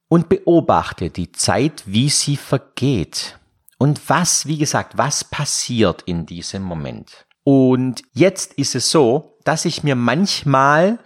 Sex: male